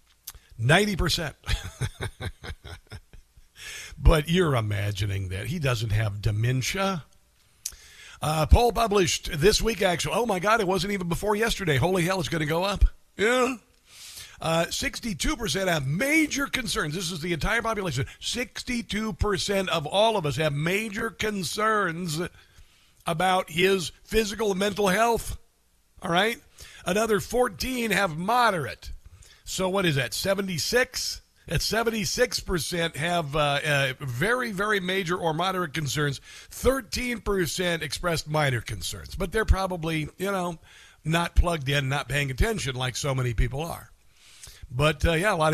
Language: English